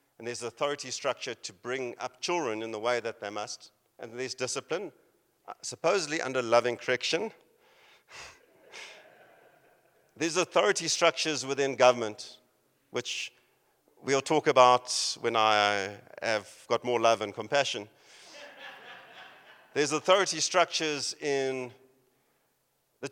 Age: 50-69